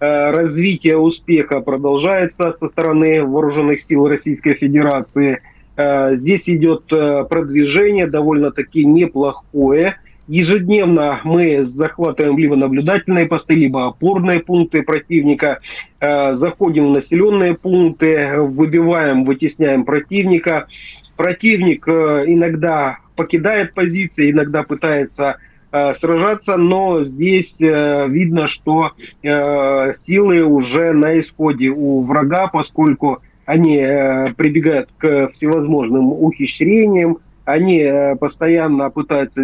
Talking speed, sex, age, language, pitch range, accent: 90 wpm, male, 30-49, Russian, 140-165 Hz, native